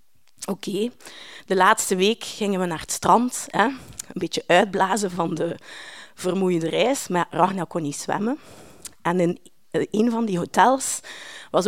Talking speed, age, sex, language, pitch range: 155 wpm, 30-49, female, Dutch, 175-255 Hz